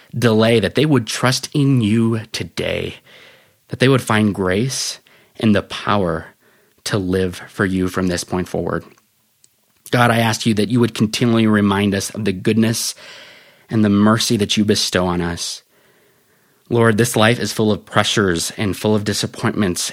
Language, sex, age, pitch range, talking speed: English, male, 30-49, 100-120 Hz, 170 wpm